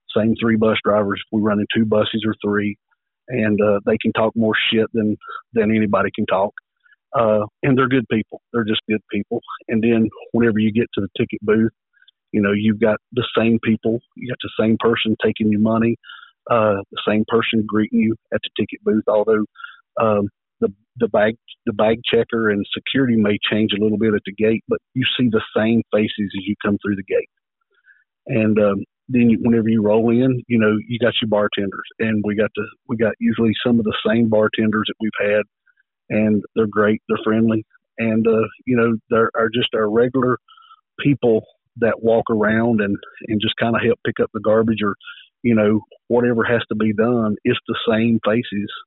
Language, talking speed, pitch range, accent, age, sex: English, 205 wpm, 105-115 Hz, American, 50-69, male